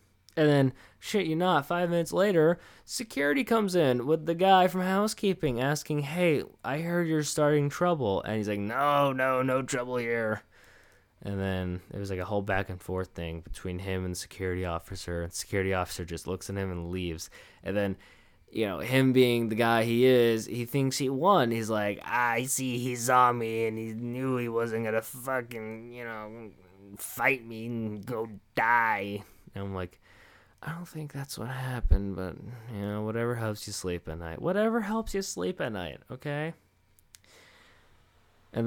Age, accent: 20-39, American